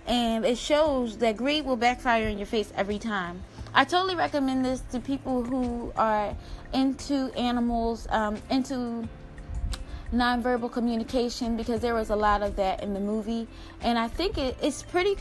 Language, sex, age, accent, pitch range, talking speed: English, female, 20-39, American, 215-265 Hz, 160 wpm